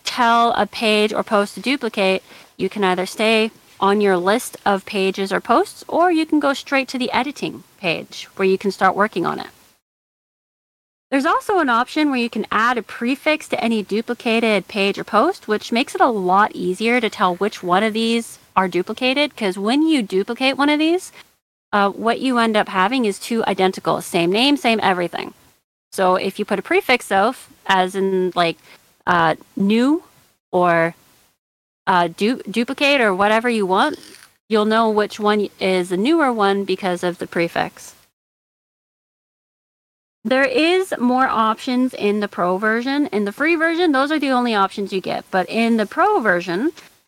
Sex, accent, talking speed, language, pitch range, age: female, American, 175 wpm, English, 195-260 Hz, 30-49